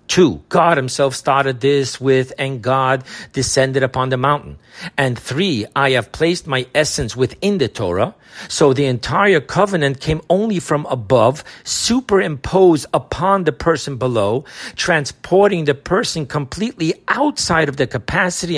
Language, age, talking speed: English, 50-69, 140 wpm